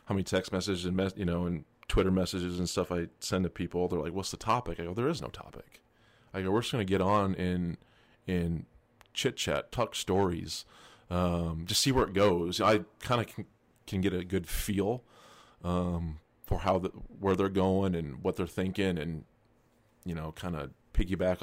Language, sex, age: English, male, 30-49